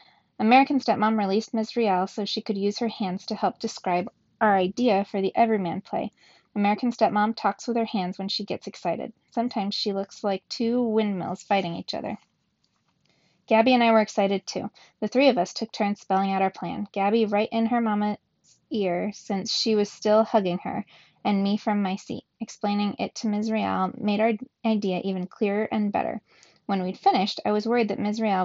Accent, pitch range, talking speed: American, 190-225 Hz, 195 wpm